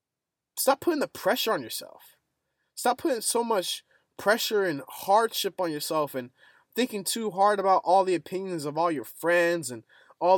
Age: 20-39